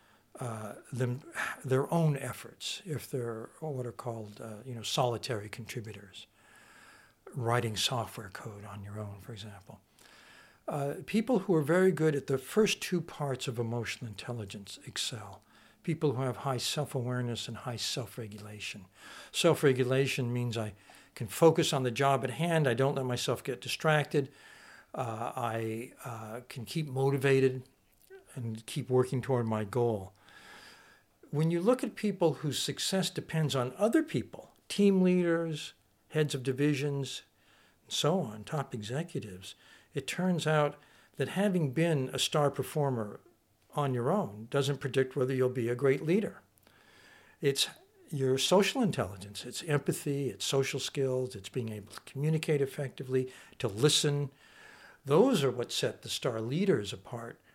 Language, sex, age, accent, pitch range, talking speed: English, male, 60-79, American, 115-150 Hz, 145 wpm